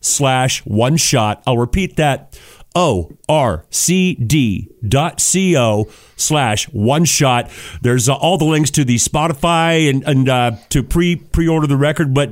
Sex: male